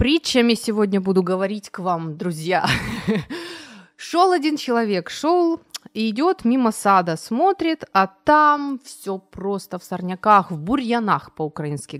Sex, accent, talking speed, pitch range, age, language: female, native, 125 wpm, 195-310 Hz, 30-49, Ukrainian